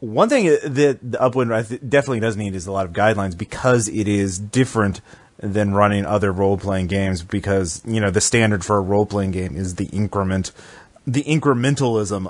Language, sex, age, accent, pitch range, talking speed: English, male, 30-49, American, 95-120 Hz, 185 wpm